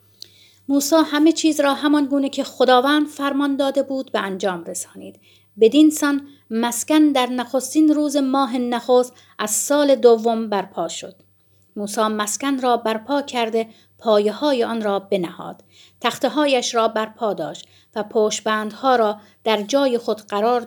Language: Persian